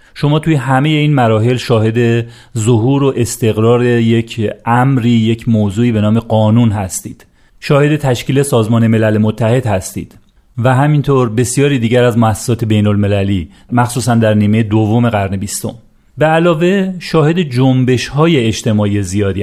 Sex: male